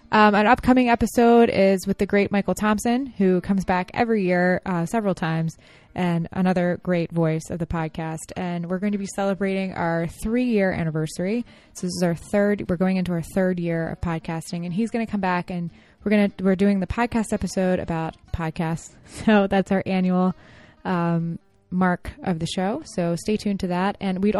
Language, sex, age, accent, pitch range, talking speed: English, female, 20-39, American, 170-200 Hz, 195 wpm